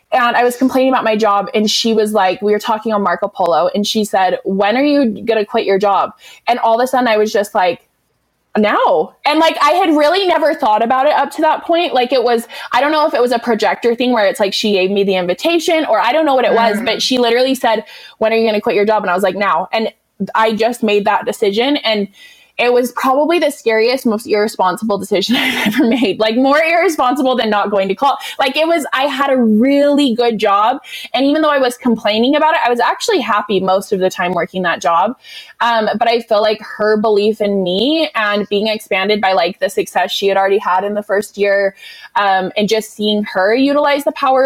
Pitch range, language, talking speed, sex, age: 200-270 Hz, English, 245 wpm, female, 20-39